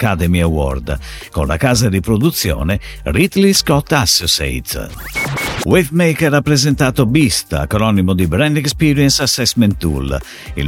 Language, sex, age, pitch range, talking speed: Italian, male, 50-69, 85-140 Hz, 120 wpm